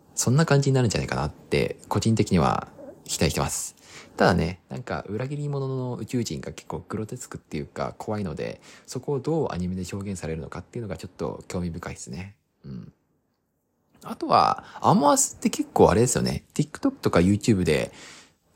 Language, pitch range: Japanese, 85-140 Hz